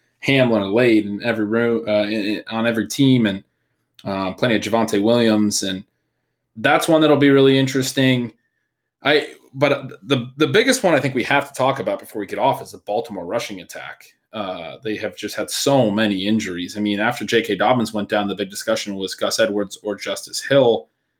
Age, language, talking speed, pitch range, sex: 20-39, English, 195 wpm, 105-125 Hz, male